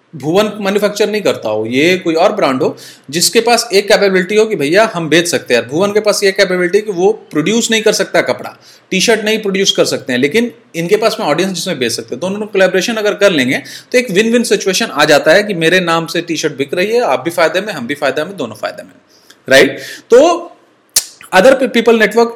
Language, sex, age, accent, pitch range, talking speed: Hindi, male, 30-49, native, 165-225 Hz, 225 wpm